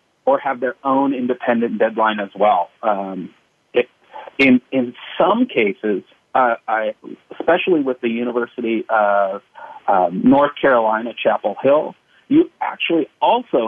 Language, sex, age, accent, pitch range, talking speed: English, male, 40-59, American, 110-135 Hz, 125 wpm